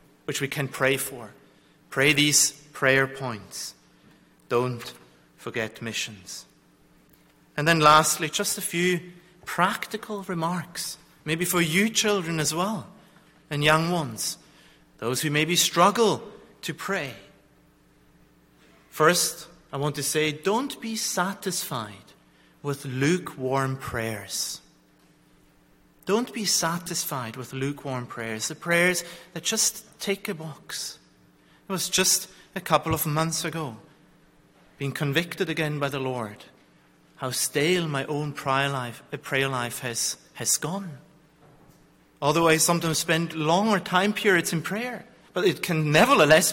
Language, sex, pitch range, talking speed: English, male, 130-175 Hz, 125 wpm